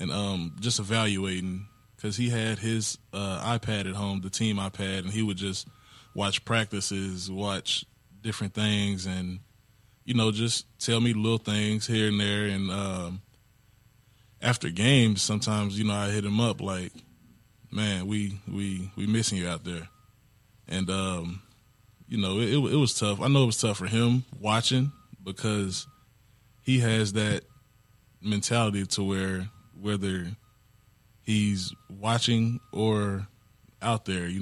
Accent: American